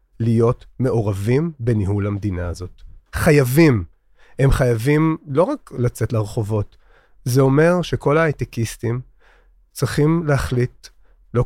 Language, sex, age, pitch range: Hebrew, male, 30-49, 115-150 Hz